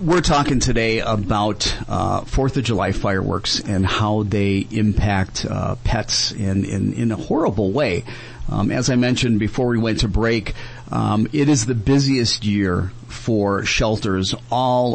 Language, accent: English, American